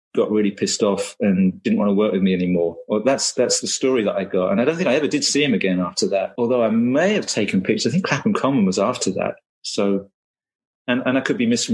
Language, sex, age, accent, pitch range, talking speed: English, male, 30-49, British, 100-135 Hz, 265 wpm